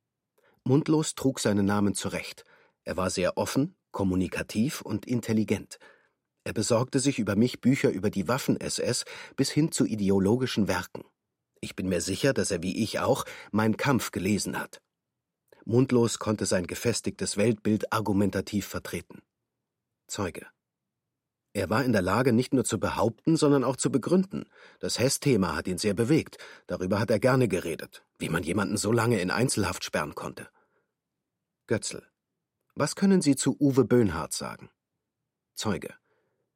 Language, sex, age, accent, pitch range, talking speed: German, male, 40-59, German, 100-125 Hz, 145 wpm